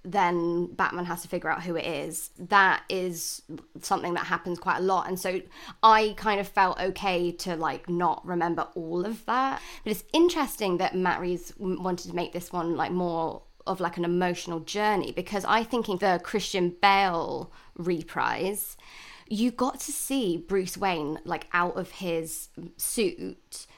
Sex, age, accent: female, 20-39, British